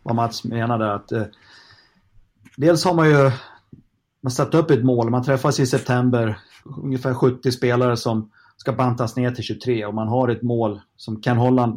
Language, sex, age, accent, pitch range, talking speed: Swedish, male, 30-49, native, 110-130 Hz, 175 wpm